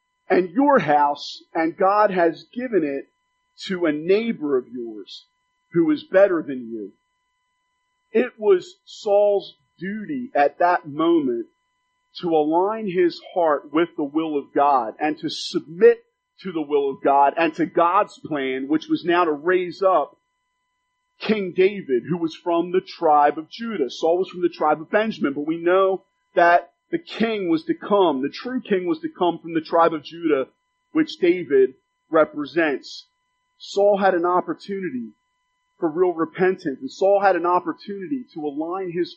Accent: American